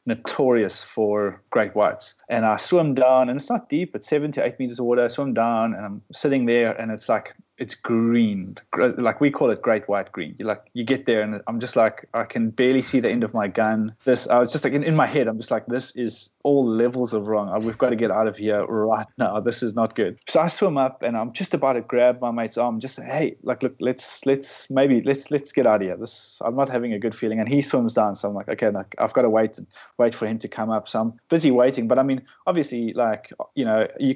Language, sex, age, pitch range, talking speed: English, male, 20-39, 110-140 Hz, 265 wpm